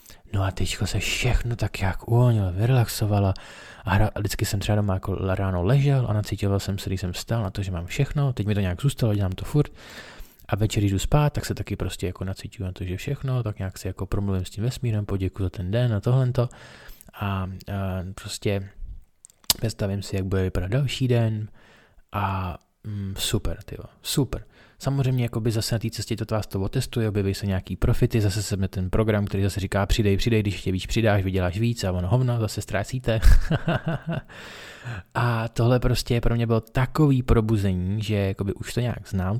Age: 20-39